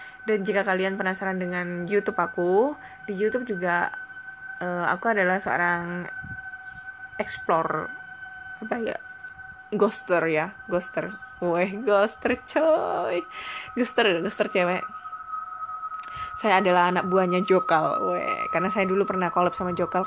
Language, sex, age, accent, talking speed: Indonesian, female, 20-39, native, 115 wpm